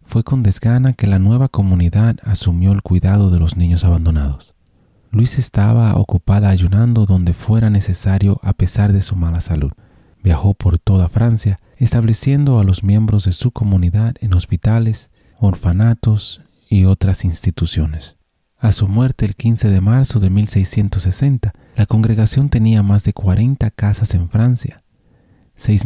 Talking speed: 145 wpm